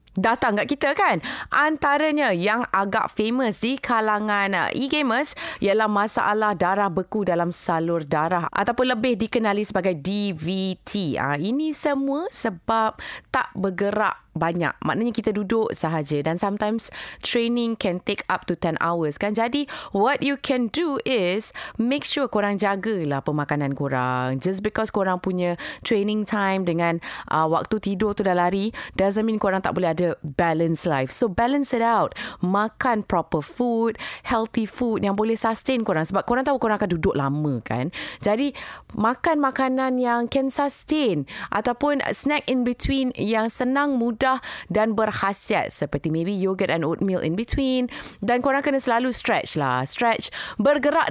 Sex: female